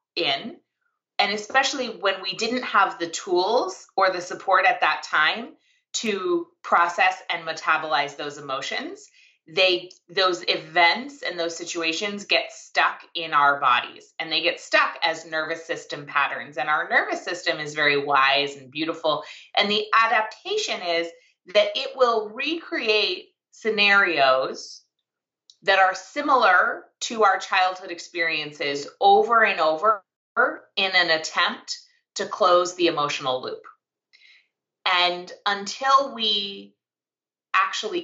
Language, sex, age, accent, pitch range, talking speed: English, female, 30-49, American, 165-250 Hz, 125 wpm